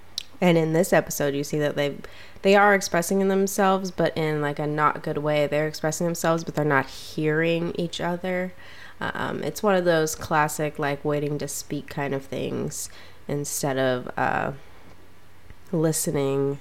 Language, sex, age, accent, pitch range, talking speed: English, female, 20-39, American, 135-155 Hz, 165 wpm